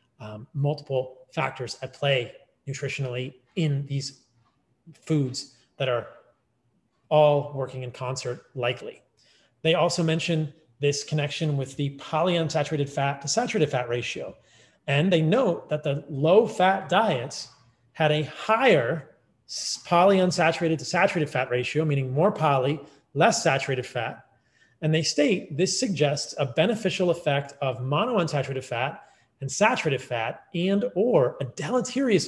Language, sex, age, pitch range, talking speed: English, male, 30-49, 135-175 Hz, 125 wpm